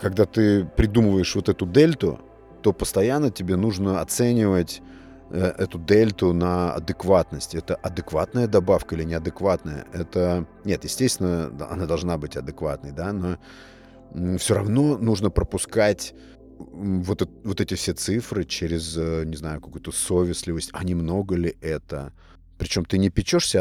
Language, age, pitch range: Russian, 30-49, 85-105 Hz